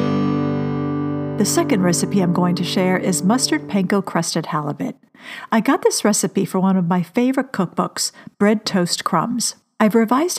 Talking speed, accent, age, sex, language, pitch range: 155 wpm, American, 50-69, female, English, 170-220 Hz